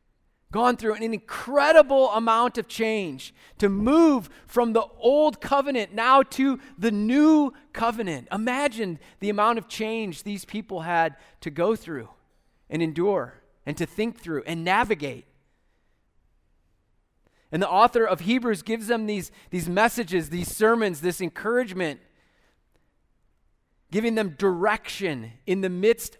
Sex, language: male, English